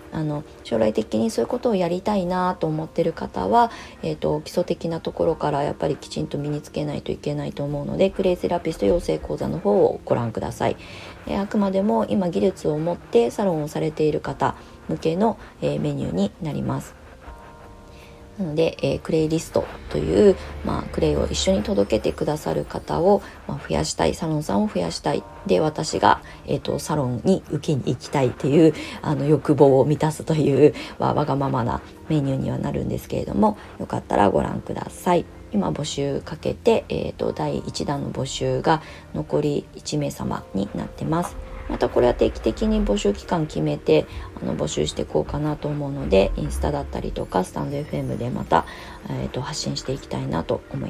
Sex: female